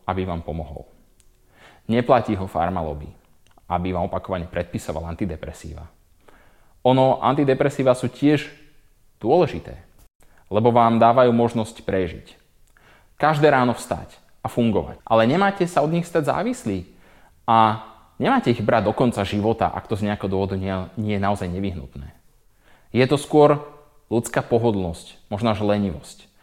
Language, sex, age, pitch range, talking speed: Slovak, male, 20-39, 95-130 Hz, 125 wpm